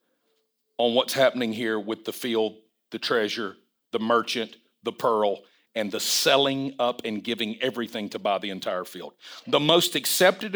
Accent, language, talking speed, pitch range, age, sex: American, English, 160 wpm, 140-195 Hz, 50-69, male